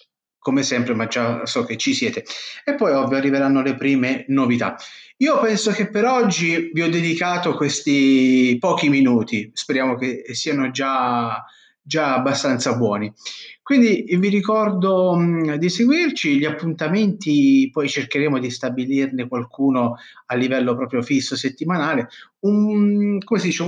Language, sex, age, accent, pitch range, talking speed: Italian, male, 30-49, native, 130-185 Hz, 140 wpm